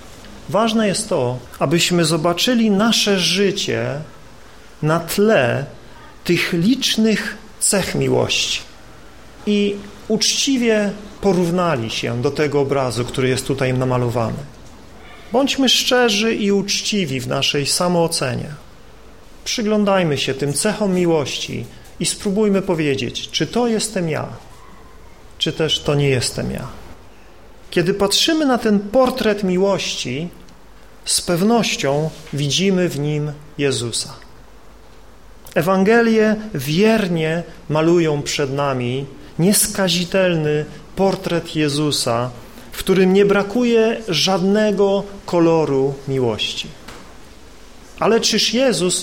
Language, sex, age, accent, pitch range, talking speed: Polish, male, 40-59, native, 145-210 Hz, 95 wpm